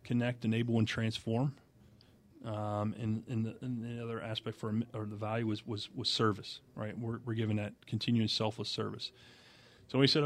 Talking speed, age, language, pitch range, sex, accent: 175 wpm, 40-59, English, 110-125 Hz, male, American